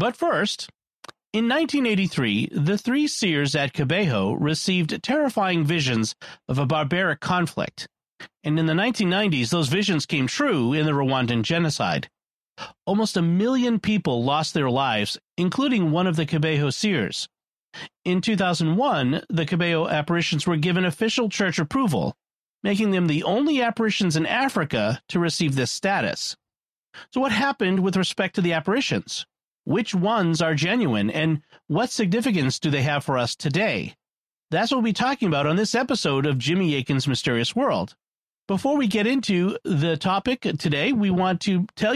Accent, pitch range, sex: American, 155-220 Hz, male